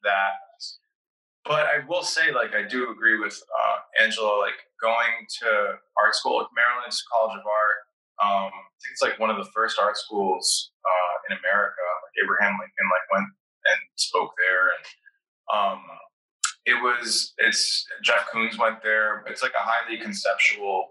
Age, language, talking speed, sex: 20-39, English, 160 wpm, male